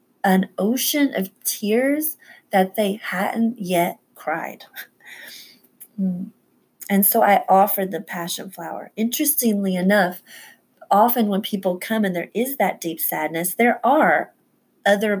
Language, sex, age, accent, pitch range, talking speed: English, female, 30-49, American, 165-200 Hz, 120 wpm